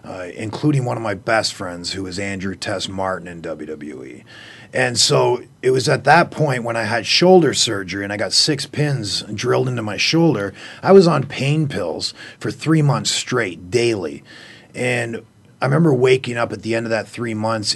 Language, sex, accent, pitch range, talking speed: English, male, American, 105-135 Hz, 195 wpm